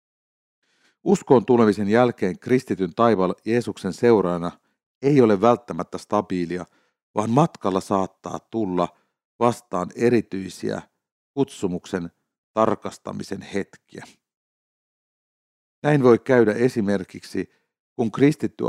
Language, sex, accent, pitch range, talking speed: Finnish, male, native, 95-120 Hz, 85 wpm